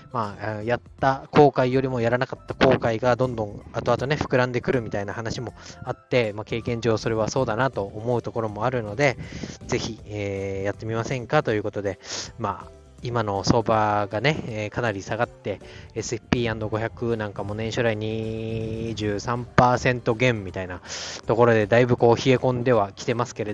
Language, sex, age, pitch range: Japanese, male, 20-39, 110-130 Hz